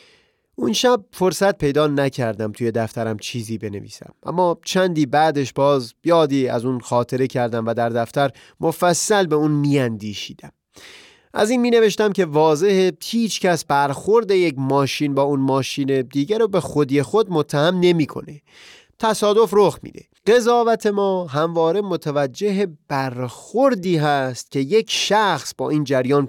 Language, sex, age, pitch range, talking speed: Persian, male, 30-49, 135-205 Hz, 140 wpm